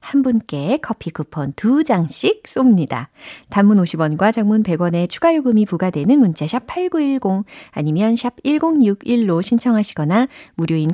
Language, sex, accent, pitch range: Korean, female, native, 155-235 Hz